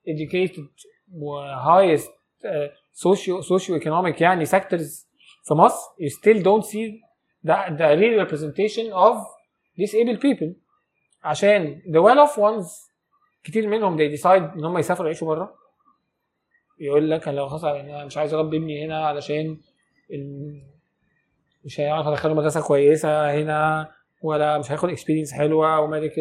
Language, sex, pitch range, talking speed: English, male, 150-195 Hz, 85 wpm